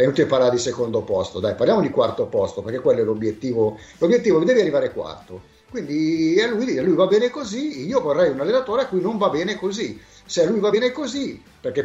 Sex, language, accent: male, Italian, native